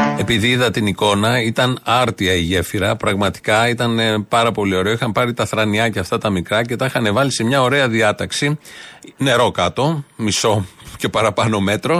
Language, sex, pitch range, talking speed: Greek, male, 110-155 Hz, 175 wpm